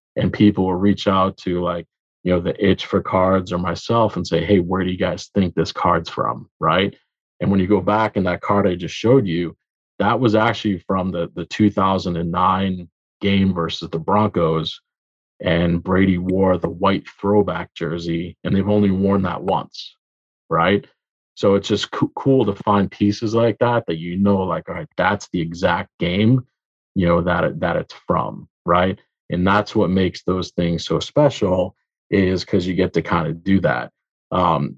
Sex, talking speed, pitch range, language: male, 190 wpm, 85-105 Hz, English